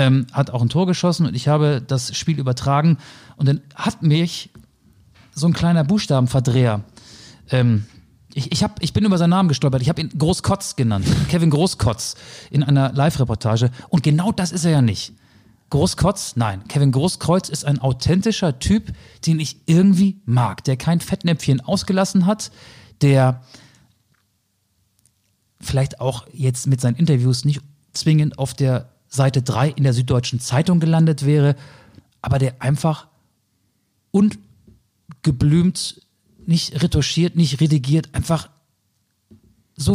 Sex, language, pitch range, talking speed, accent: male, German, 125-155 Hz, 135 wpm, German